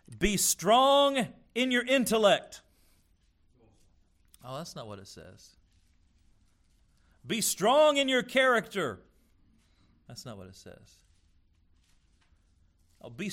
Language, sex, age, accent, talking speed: English, male, 40-59, American, 100 wpm